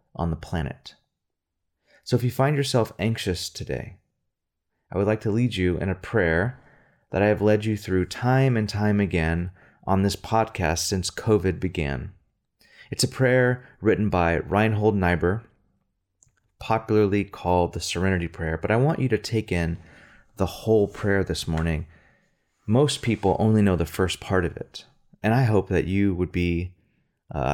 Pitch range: 85-110 Hz